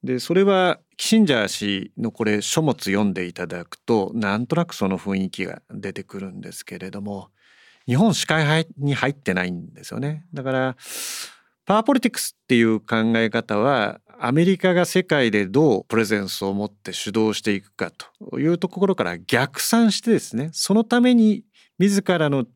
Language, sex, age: Japanese, male, 40-59